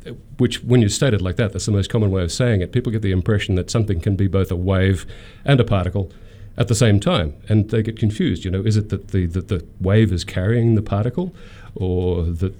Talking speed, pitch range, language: 250 wpm, 95-115 Hz, English